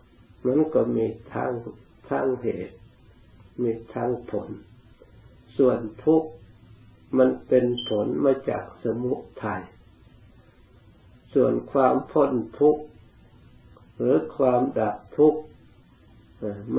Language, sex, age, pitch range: Thai, male, 60-79, 110-130 Hz